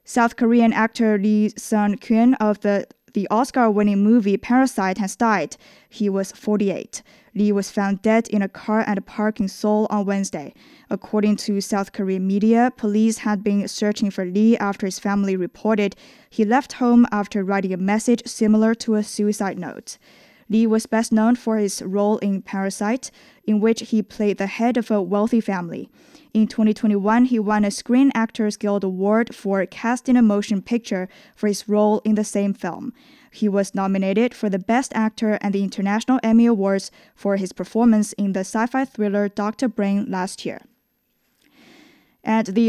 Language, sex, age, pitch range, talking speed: English, female, 10-29, 200-235 Hz, 175 wpm